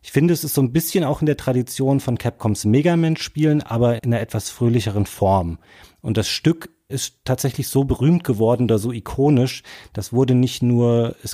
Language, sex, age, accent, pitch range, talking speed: German, male, 30-49, German, 105-135 Hz, 190 wpm